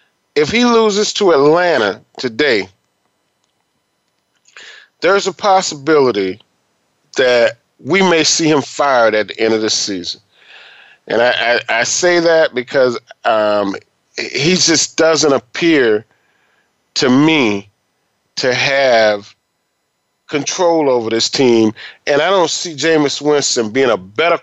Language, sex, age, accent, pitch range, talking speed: English, male, 40-59, American, 120-170 Hz, 125 wpm